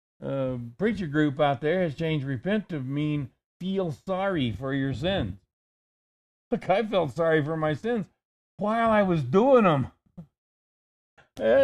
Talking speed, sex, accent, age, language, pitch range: 150 wpm, male, American, 50-69, English, 125-175 Hz